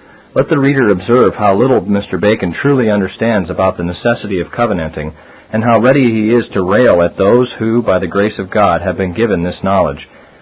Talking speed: 200 wpm